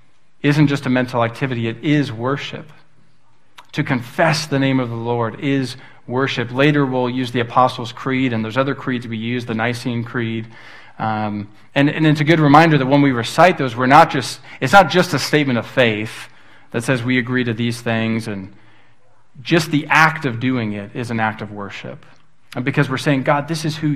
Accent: American